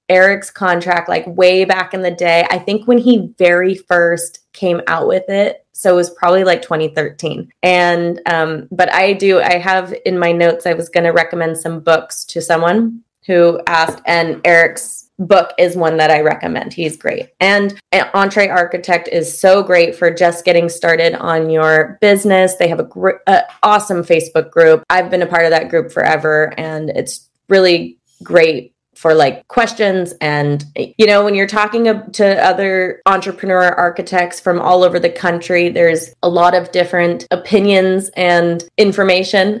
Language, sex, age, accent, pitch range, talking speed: English, female, 20-39, American, 170-195 Hz, 175 wpm